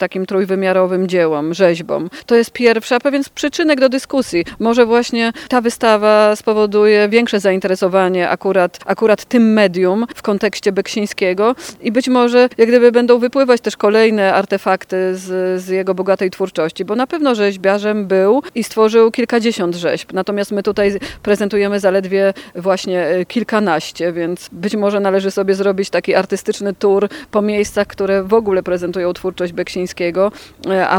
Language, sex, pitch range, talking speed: Polish, female, 195-230 Hz, 145 wpm